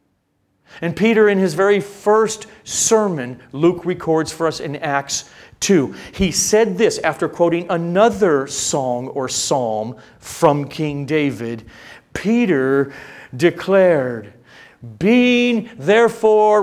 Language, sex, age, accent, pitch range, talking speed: English, male, 40-59, American, 125-195 Hz, 110 wpm